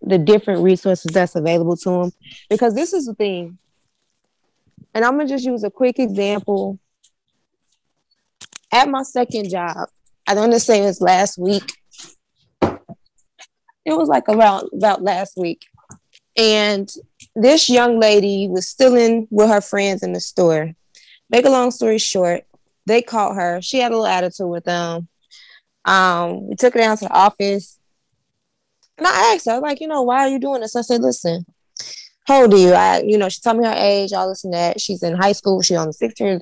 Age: 20-39